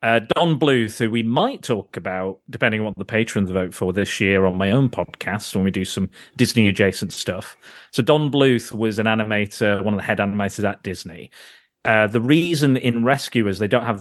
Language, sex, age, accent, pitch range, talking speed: English, male, 30-49, British, 95-115 Hz, 205 wpm